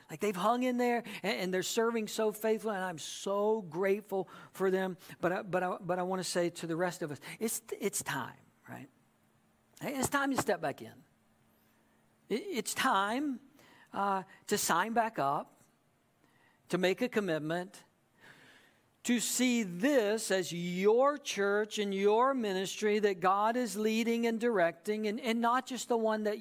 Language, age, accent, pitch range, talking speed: English, 60-79, American, 185-230 Hz, 165 wpm